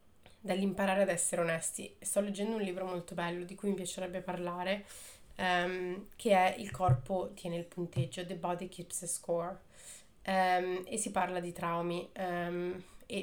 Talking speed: 165 wpm